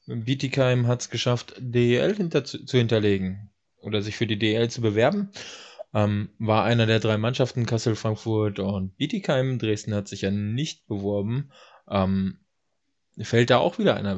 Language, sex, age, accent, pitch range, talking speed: German, male, 20-39, German, 110-130 Hz, 155 wpm